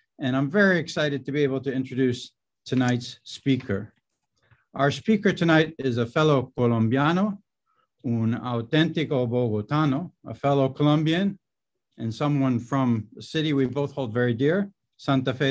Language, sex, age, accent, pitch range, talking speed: English, male, 60-79, American, 125-160 Hz, 140 wpm